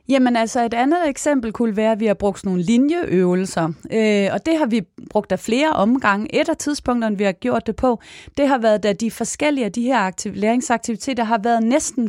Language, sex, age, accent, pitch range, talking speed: Danish, female, 30-49, native, 205-265 Hz, 215 wpm